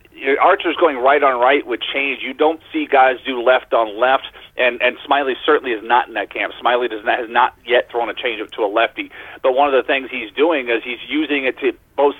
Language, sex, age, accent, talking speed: English, male, 40-59, American, 240 wpm